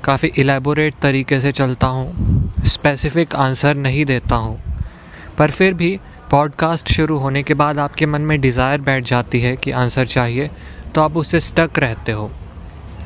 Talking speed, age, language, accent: 160 wpm, 20-39, Hindi, native